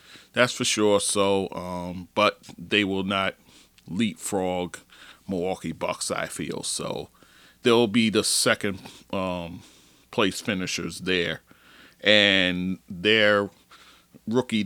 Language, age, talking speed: English, 40-59, 105 wpm